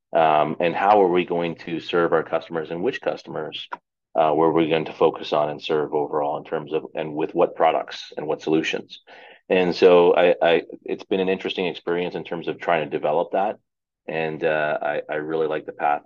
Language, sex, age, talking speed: English, male, 30-49, 215 wpm